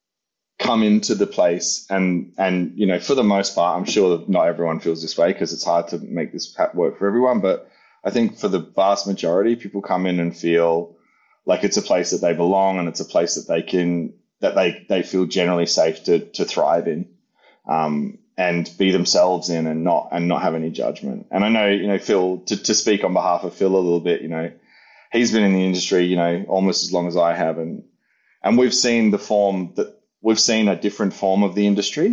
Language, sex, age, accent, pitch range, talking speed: English, male, 20-39, Australian, 85-100 Hz, 230 wpm